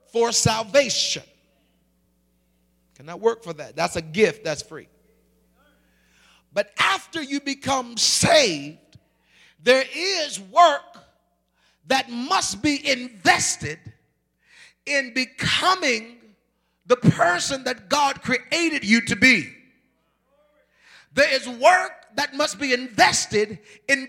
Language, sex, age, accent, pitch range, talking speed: English, male, 40-59, American, 170-275 Hz, 100 wpm